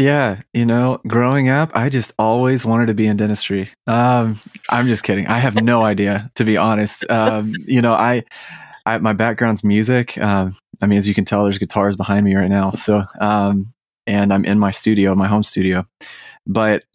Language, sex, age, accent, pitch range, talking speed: English, male, 20-39, American, 95-110 Hz, 200 wpm